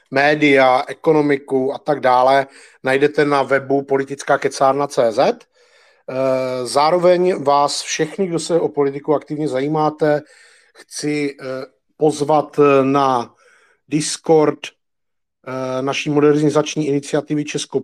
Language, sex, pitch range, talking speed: Czech, male, 135-150 Hz, 85 wpm